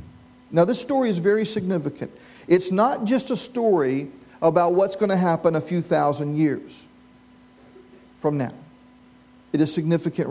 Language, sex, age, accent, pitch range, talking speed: English, male, 40-59, American, 155-205 Hz, 145 wpm